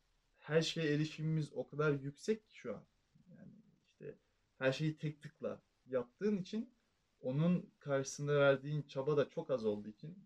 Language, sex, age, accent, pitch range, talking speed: Turkish, male, 30-49, native, 135-190 Hz, 150 wpm